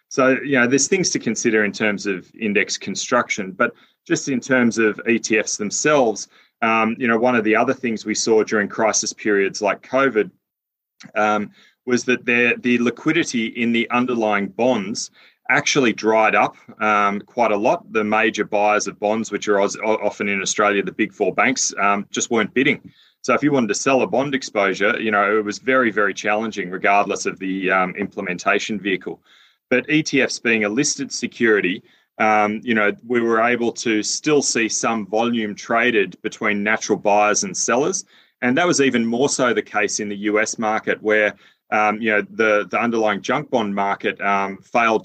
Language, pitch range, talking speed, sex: English, 105-120 Hz, 185 wpm, male